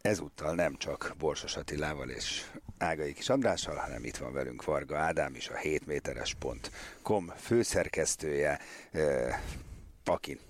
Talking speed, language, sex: 110 wpm, Hungarian, male